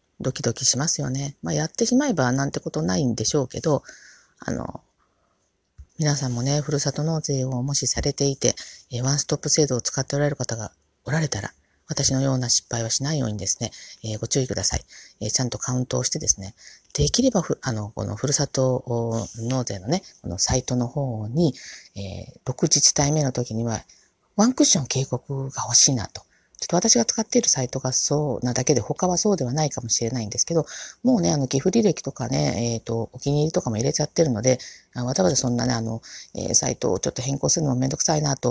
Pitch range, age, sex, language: 115-150 Hz, 40-59, female, Japanese